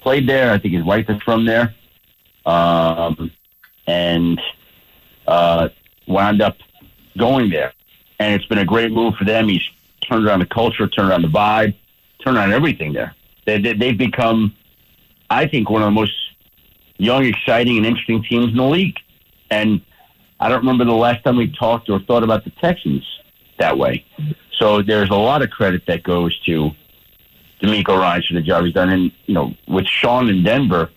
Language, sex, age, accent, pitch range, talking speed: English, male, 50-69, American, 95-120 Hz, 180 wpm